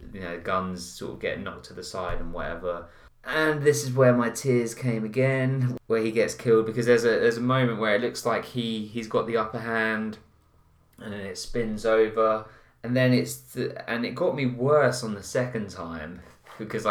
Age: 20-39